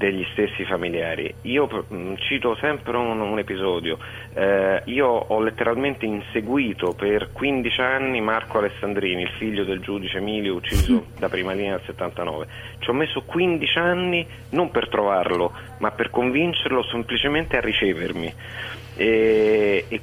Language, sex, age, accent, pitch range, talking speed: Italian, male, 30-49, native, 100-120 Hz, 140 wpm